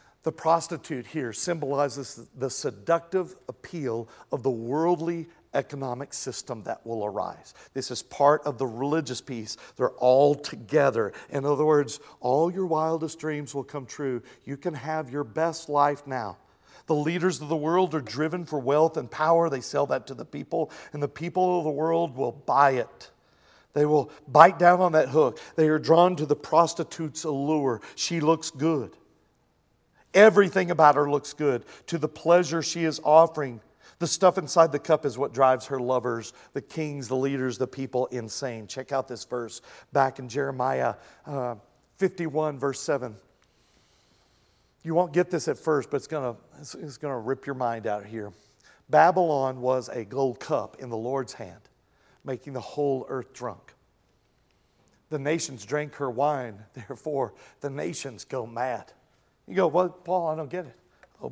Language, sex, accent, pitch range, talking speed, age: English, male, American, 130-160 Hz, 170 wpm, 50-69